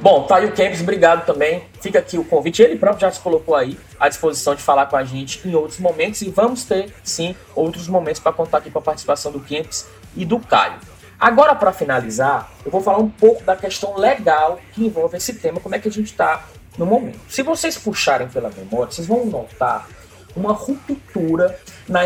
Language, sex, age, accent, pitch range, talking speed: Portuguese, male, 20-39, Brazilian, 155-230 Hz, 210 wpm